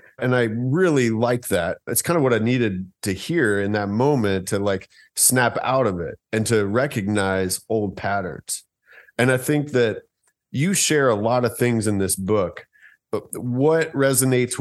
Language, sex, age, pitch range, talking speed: English, male, 40-59, 105-130 Hz, 175 wpm